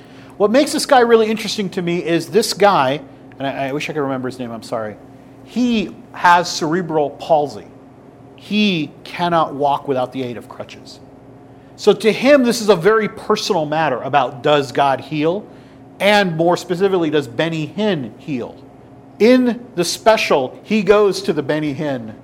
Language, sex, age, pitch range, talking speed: English, male, 40-59, 135-170 Hz, 170 wpm